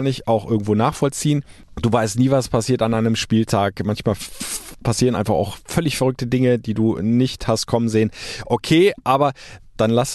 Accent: German